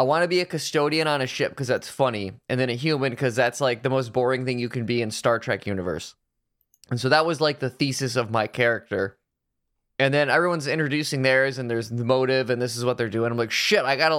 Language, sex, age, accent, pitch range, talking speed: English, male, 20-39, American, 120-145 Hz, 260 wpm